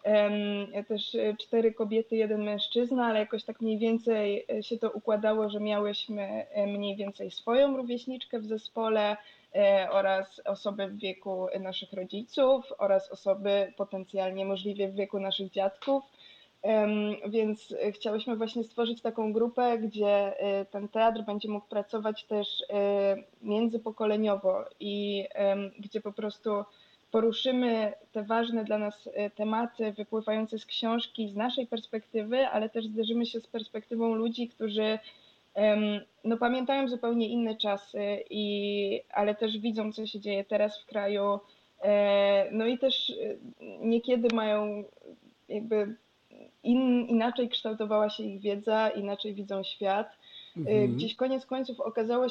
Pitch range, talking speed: 205-230 Hz, 125 wpm